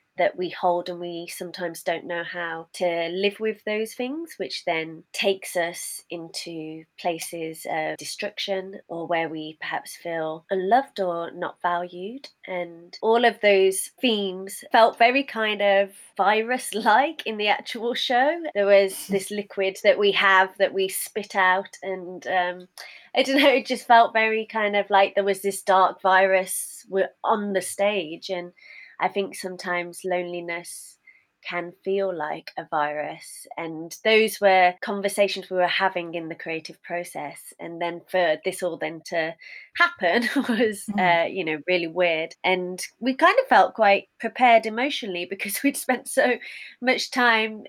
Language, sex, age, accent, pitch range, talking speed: English, female, 20-39, British, 175-220 Hz, 155 wpm